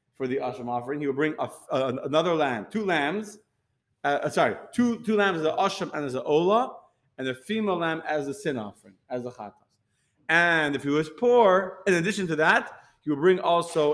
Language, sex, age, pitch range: English, male, 30-49, 135-175 Hz